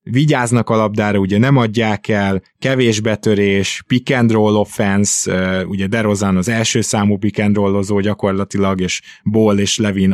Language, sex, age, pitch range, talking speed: Hungarian, male, 20-39, 100-120 Hz, 130 wpm